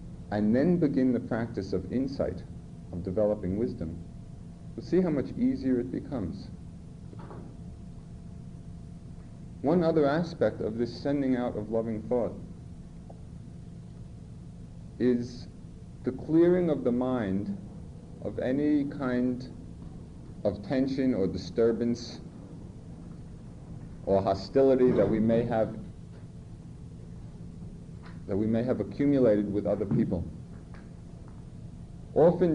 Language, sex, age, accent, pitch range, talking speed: English, male, 50-69, American, 105-140 Hz, 100 wpm